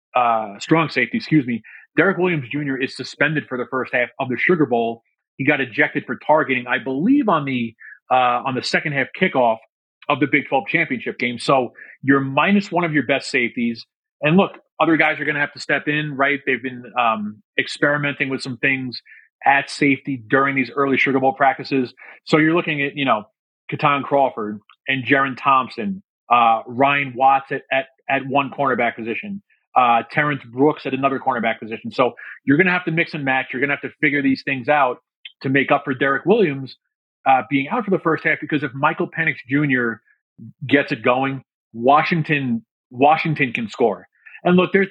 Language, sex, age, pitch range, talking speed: English, male, 30-49, 130-150 Hz, 195 wpm